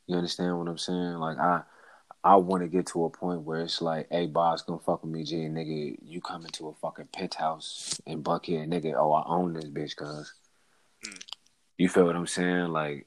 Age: 20-39